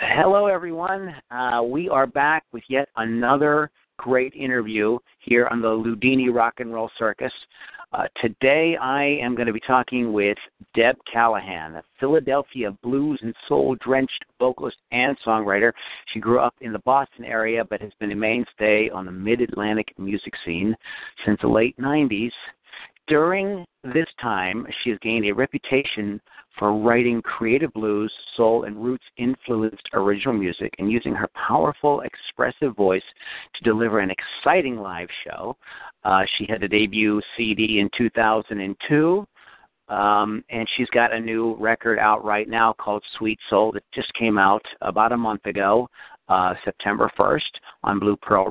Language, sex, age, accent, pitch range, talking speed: English, male, 50-69, American, 105-130 Hz, 150 wpm